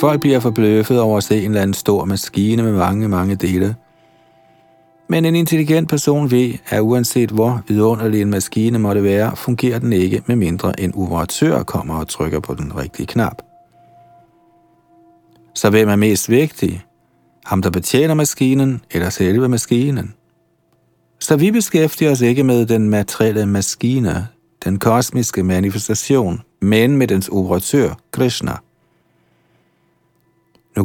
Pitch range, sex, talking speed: 100-135 Hz, male, 140 wpm